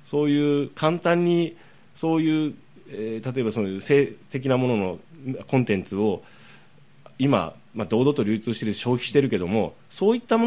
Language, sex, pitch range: Japanese, male, 110-155 Hz